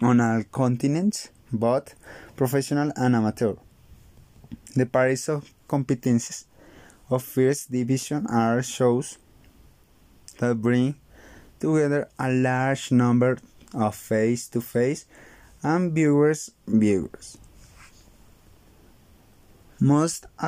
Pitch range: 120-140 Hz